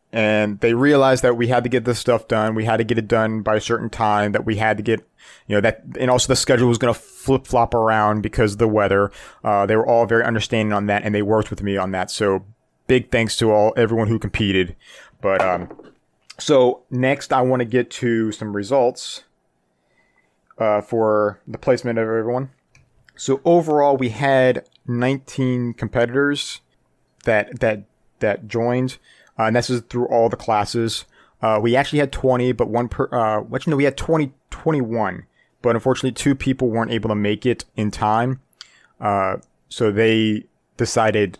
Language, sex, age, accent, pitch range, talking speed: English, male, 30-49, American, 105-125 Hz, 190 wpm